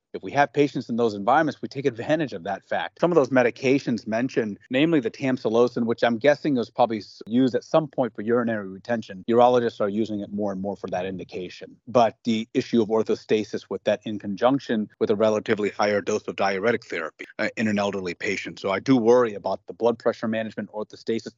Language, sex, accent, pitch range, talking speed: English, male, American, 110-135 Hz, 210 wpm